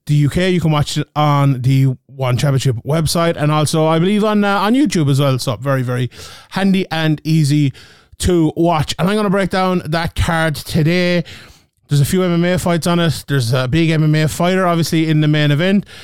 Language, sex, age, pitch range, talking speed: English, male, 30-49, 140-180 Hz, 205 wpm